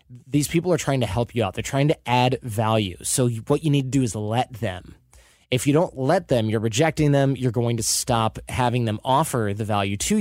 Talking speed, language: 235 wpm, English